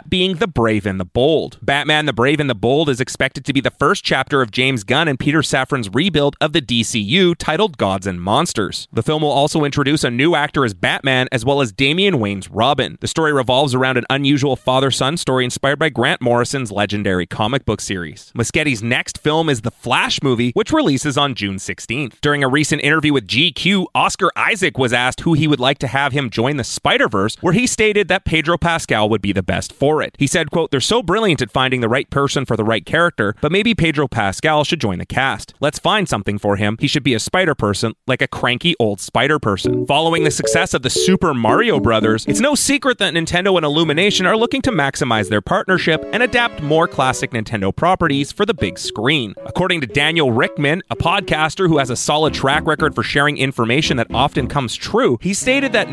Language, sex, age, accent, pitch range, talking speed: English, male, 30-49, American, 120-165 Hz, 215 wpm